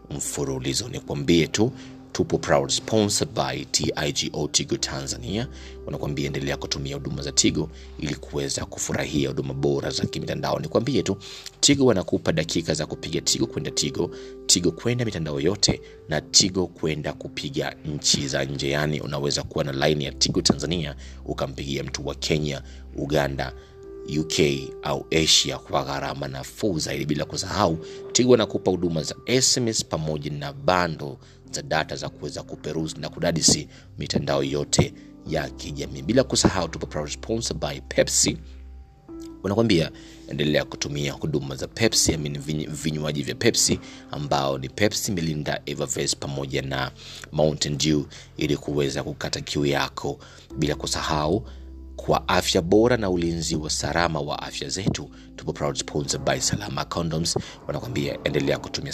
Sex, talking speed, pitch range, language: male, 140 wpm, 70-90 Hz, Swahili